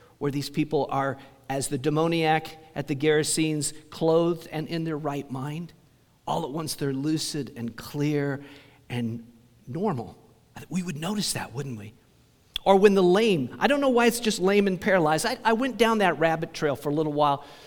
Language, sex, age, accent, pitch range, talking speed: English, male, 50-69, American, 135-165 Hz, 185 wpm